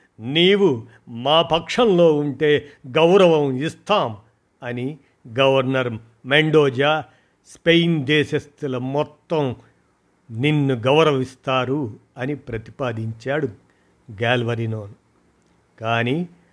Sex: male